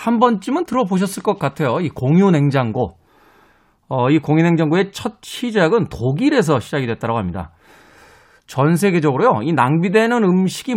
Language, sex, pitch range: Korean, male, 130-200 Hz